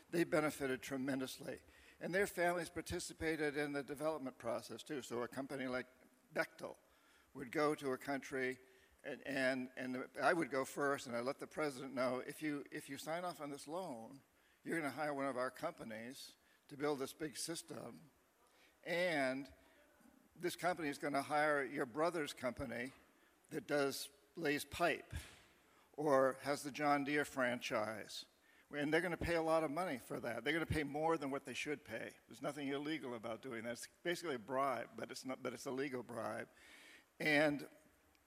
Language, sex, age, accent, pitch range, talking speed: English, male, 50-69, American, 130-155 Hz, 180 wpm